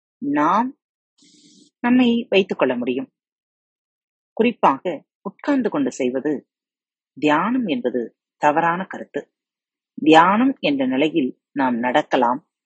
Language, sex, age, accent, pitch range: Tamil, female, 30-49, native, 160-265 Hz